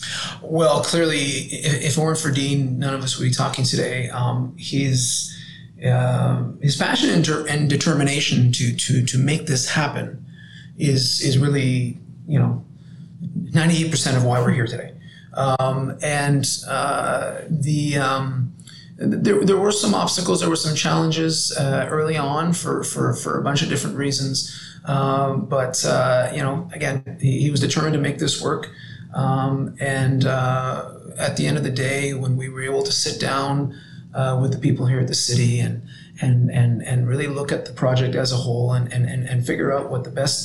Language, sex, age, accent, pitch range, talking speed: English, male, 30-49, American, 130-155 Hz, 180 wpm